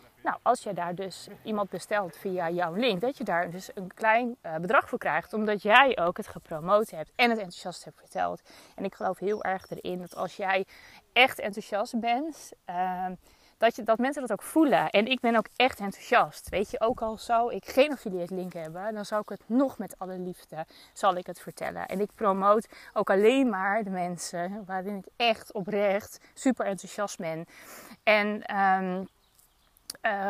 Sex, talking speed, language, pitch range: female, 190 wpm, Dutch, 190-245 Hz